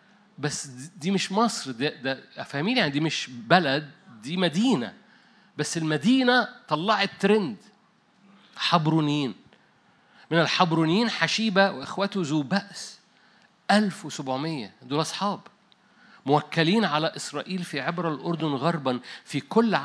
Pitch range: 170-220 Hz